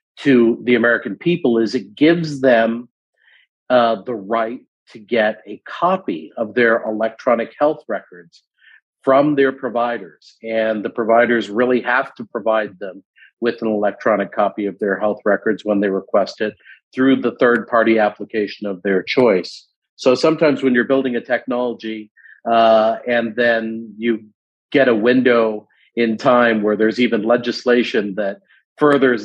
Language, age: English, 40-59